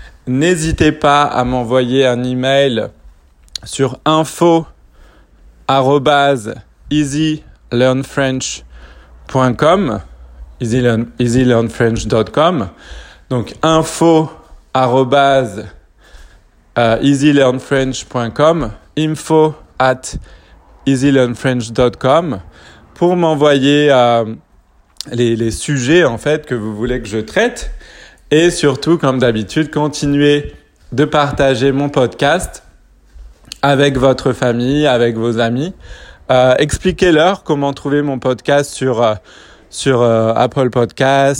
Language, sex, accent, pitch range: French, male, French, 120-145 Hz